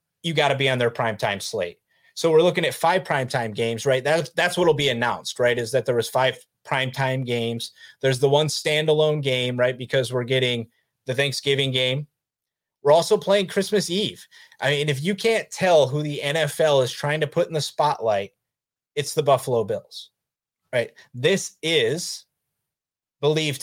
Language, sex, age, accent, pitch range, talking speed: English, male, 30-49, American, 130-150 Hz, 180 wpm